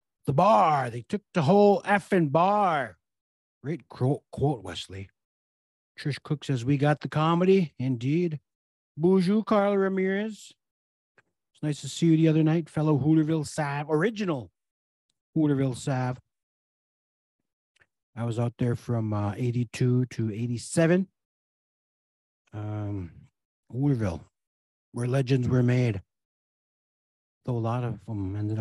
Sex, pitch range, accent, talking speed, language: male, 105-160 Hz, American, 120 wpm, English